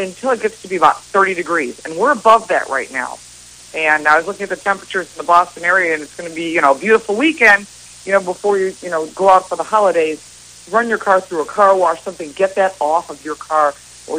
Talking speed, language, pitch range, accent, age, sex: 260 wpm, English, 160-215 Hz, American, 50-69, female